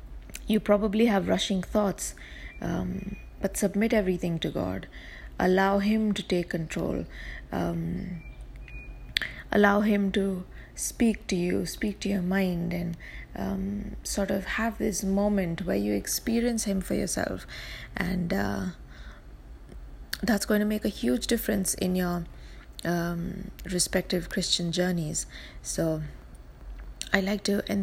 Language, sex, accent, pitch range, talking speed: English, female, Indian, 170-205 Hz, 130 wpm